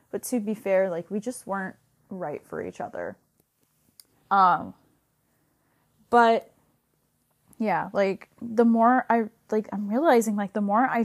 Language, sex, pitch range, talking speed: English, female, 185-230 Hz, 140 wpm